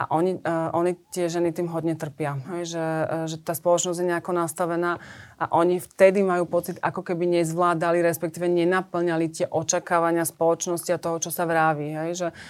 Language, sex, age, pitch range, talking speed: Slovak, female, 30-49, 160-175 Hz, 180 wpm